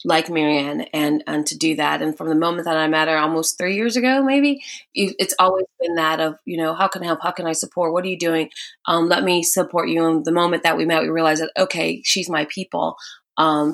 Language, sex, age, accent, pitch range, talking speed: English, female, 30-49, American, 155-180 Hz, 255 wpm